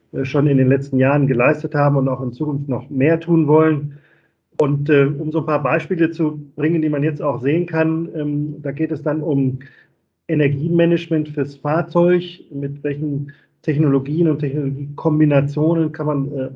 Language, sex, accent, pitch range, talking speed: German, male, German, 140-155 Hz, 170 wpm